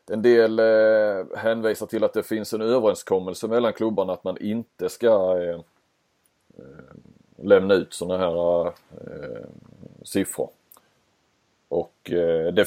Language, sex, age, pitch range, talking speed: Swedish, male, 30-49, 90-120 Hz, 125 wpm